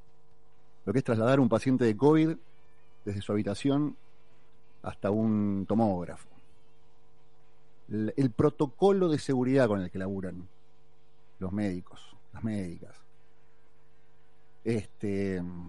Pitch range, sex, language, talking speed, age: 100-150 Hz, male, Spanish, 105 wpm, 40-59